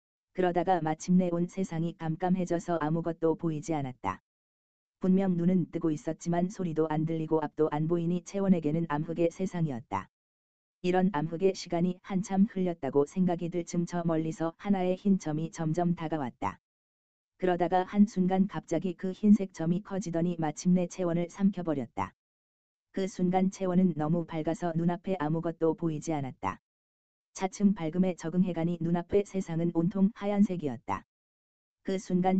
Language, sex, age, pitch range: Korean, female, 20-39, 155-185 Hz